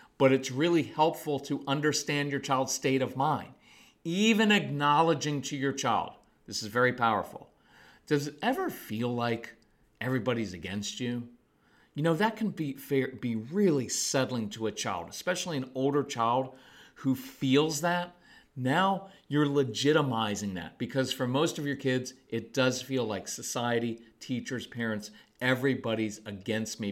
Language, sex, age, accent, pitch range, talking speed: English, male, 40-59, American, 125-170 Hz, 150 wpm